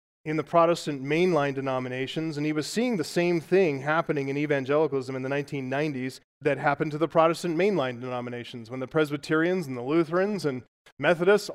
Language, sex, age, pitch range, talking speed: English, male, 30-49, 135-170 Hz, 170 wpm